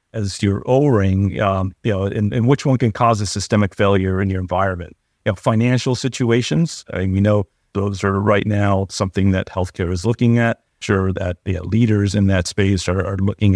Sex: male